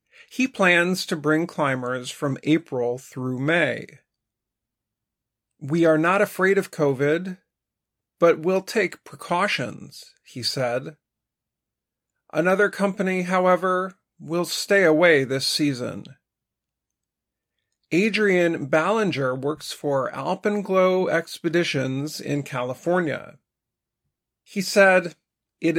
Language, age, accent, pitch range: Chinese, 40-59, American, 140-185 Hz